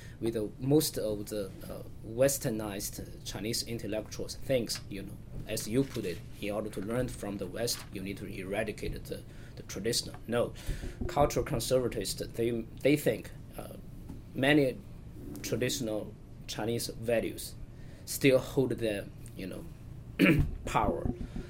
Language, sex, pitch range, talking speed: English, male, 110-130 Hz, 130 wpm